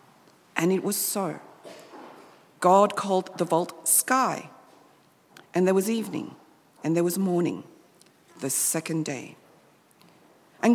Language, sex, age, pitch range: English, female, 50-69, 175-220 Hz